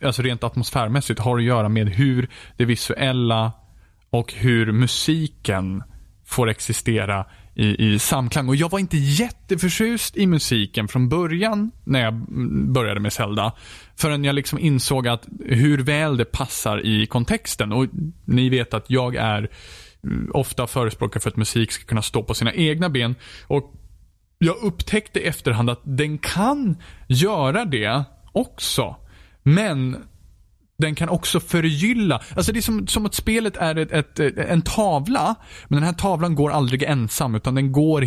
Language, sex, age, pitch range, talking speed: Swedish, male, 20-39, 115-165 Hz, 160 wpm